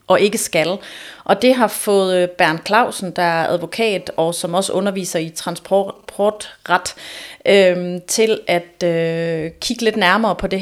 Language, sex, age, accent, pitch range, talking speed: Danish, female, 30-49, native, 175-210 Hz, 155 wpm